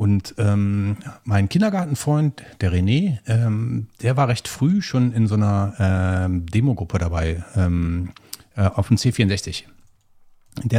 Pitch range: 95-115 Hz